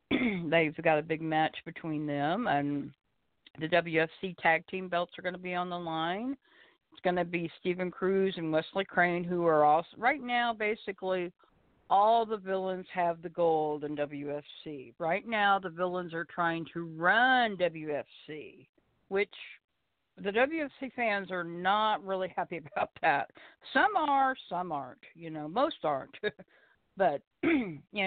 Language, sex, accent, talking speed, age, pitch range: English, female, American, 150 wpm, 50-69, 170-205 Hz